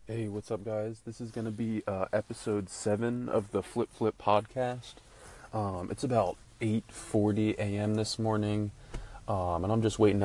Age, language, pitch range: 20-39, English, 95-110 Hz